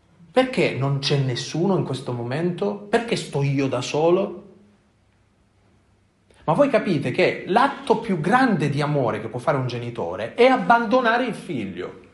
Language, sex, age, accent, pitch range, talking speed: Italian, male, 40-59, native, 130-205 Hz, 150 wpm